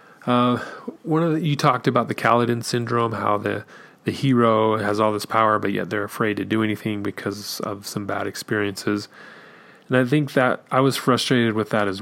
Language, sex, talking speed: English, male, 200 wpm